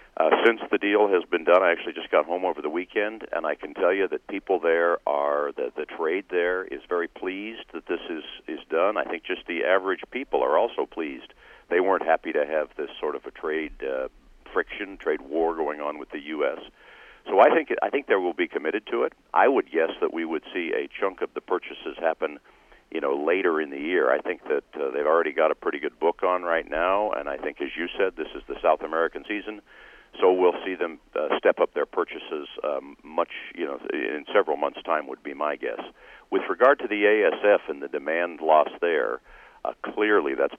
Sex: male